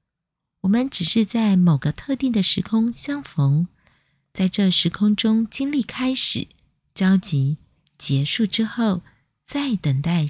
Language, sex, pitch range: Chinese, female, 160-215 Hz